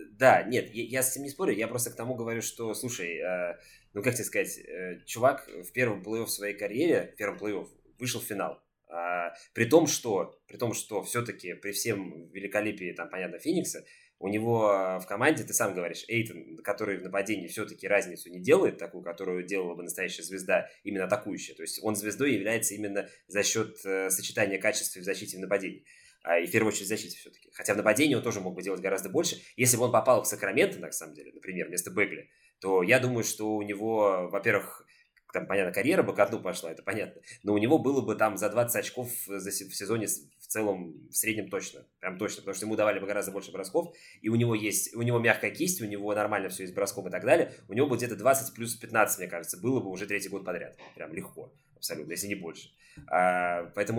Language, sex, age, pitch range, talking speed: Russian, male, 20-39, 95-115 Hz, 215 wpm